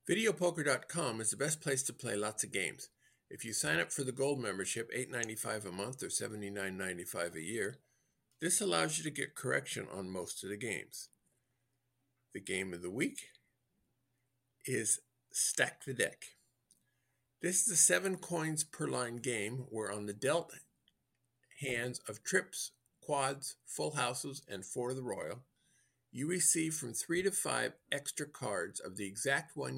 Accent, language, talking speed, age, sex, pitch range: American, English, 170 wpm, 50-69, male, 110-140 Hz